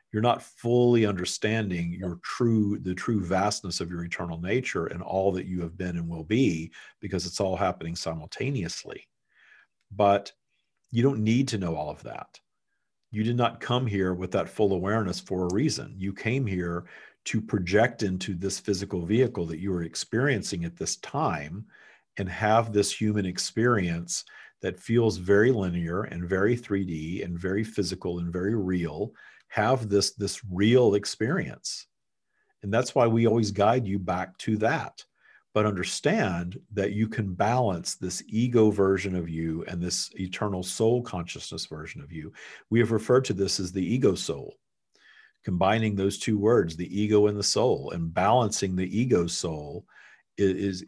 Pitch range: 90-110 Hz